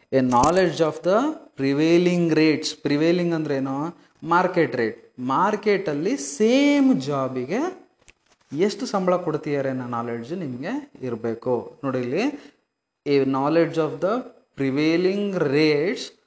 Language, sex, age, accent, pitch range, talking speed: Kannada, male, 30-49, native, 135-170 Hz, 105 wpm